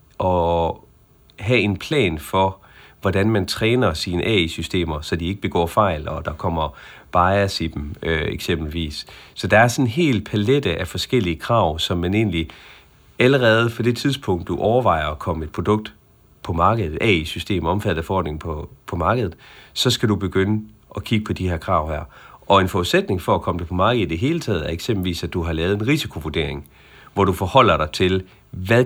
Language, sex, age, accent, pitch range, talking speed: Danish, male, 40-59, native, 90-115 Hz, 195 wpm